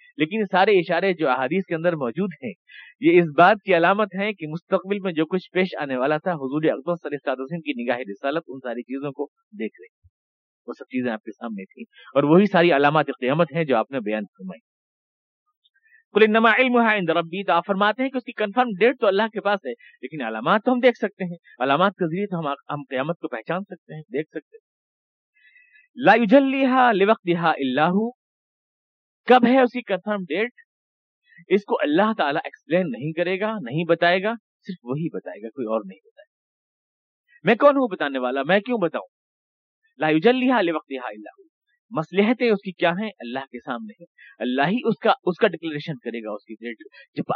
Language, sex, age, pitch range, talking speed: Urdu, male, 50-69, 150-220 Hz, 190 wpm